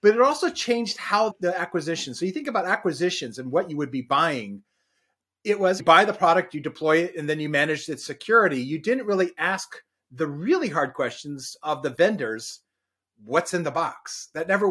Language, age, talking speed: English, 30-49, 205 wpm